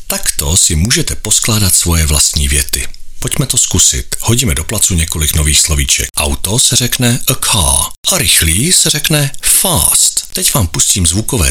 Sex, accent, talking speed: male, native, 155 wpm